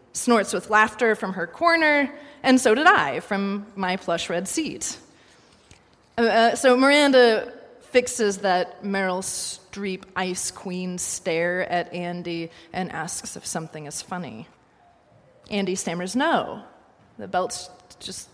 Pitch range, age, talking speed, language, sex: 180-245 Hz, 30-49, 130 wpm, English, female